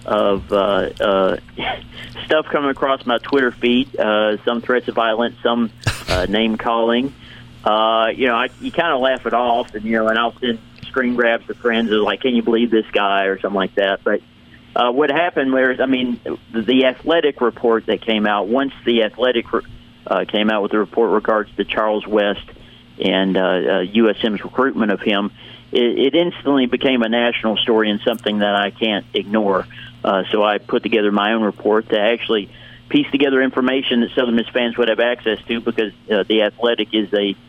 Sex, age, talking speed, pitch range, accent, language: male, 40-59, 195 wpm, 105-120 Hz, American, English